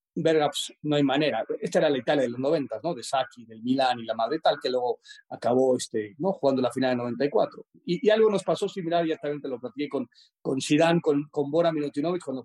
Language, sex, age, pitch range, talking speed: Spanish, male, 40-59, 135-170 Hz, 245 wpm